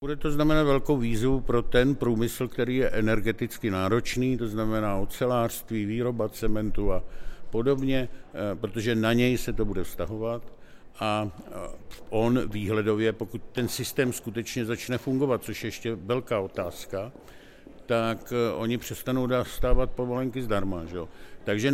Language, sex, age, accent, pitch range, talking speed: Czech, male, 60-79, native, 110-130 Hz, 135 wpm